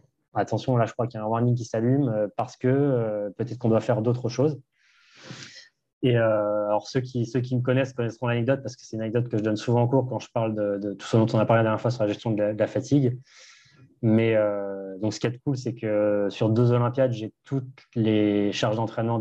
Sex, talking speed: male, 255 wpm